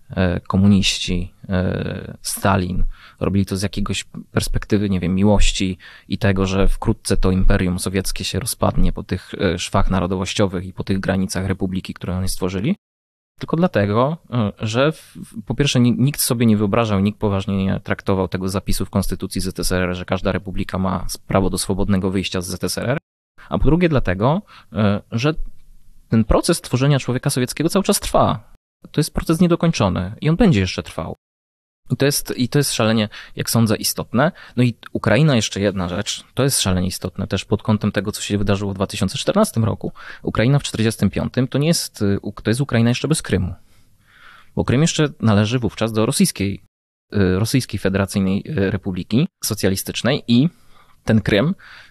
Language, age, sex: Polish, 20-39, male